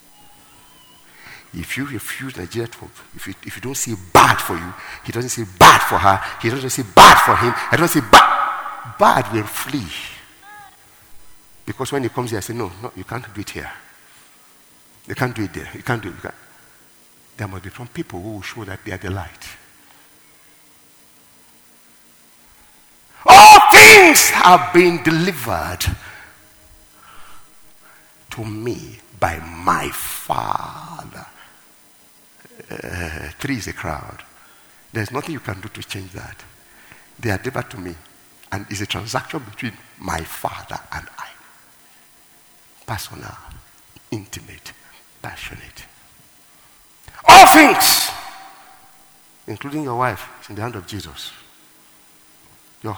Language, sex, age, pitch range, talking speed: English, male, 50-69, 100-130 Hz, 135 wpm